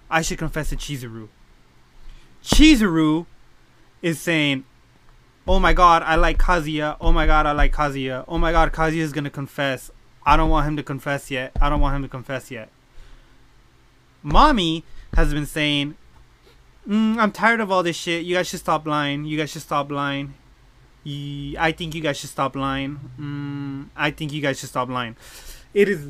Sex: male